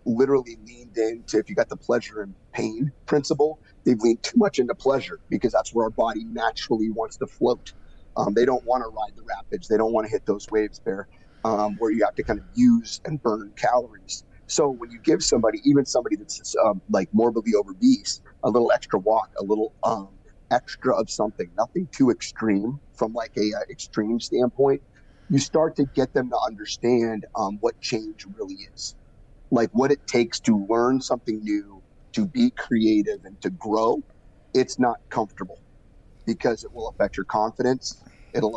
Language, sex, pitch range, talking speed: English, male, 110-150 Hz, 190 wpm